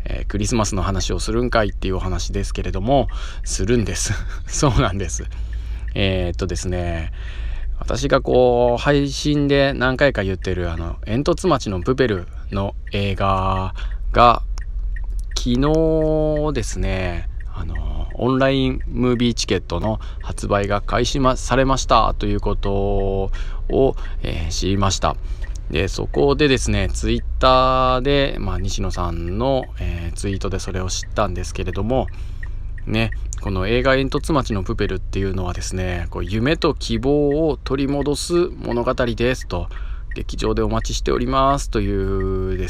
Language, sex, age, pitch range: Japanese, male, 20-39, 90-120 Hz